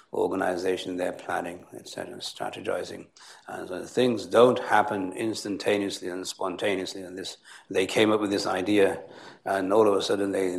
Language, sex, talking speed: English, male, 160 wpm